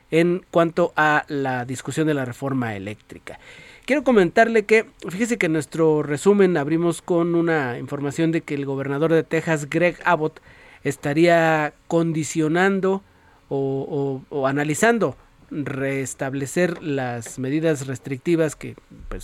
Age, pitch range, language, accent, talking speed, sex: 40-59, 145-175 Hz, Spanish, Mexican, 130 wpm, male